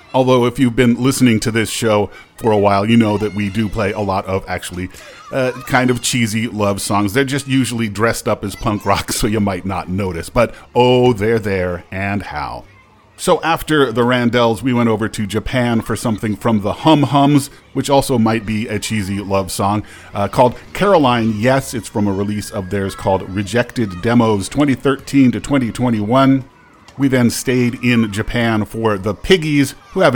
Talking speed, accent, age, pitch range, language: 185 wpm, American, 40-59, 100-125 Hz, English